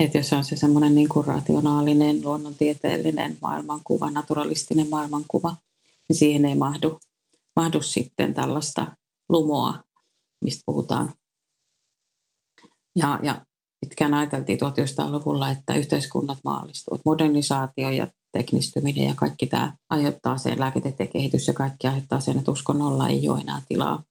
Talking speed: 125 wpm